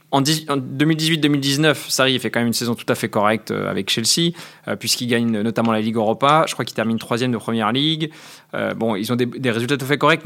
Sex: male